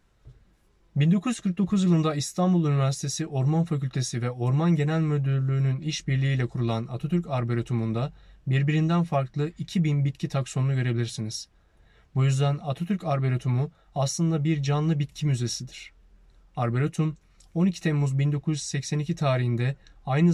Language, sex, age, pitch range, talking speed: Turkish, male, 30-49, 130-155 Hz, 105 wpm